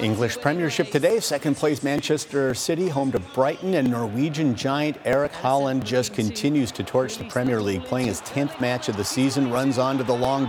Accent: American